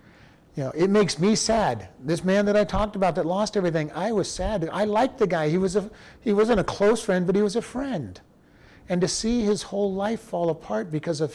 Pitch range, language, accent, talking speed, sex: 145-195 Hz, English, American, 240 wpm, male